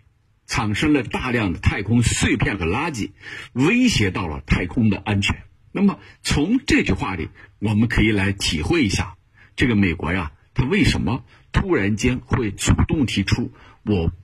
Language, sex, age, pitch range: Chinese, male, 50-69, 100-135 Hz